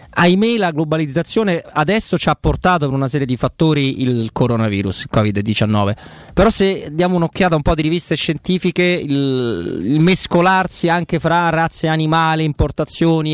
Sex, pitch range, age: male, 125-155 Hz, 20-39